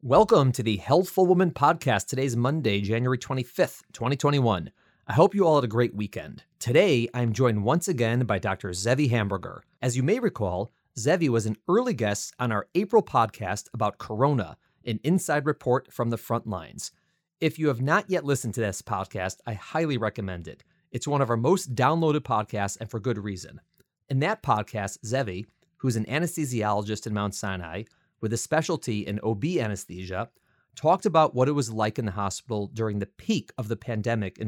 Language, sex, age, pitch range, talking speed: English, male, 30-49, 105-150 Hz, 185 wpm